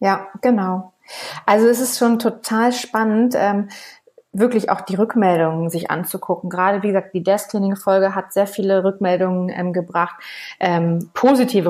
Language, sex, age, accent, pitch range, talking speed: German, female, 30-49, German, 185-225 Hz, 155 wpm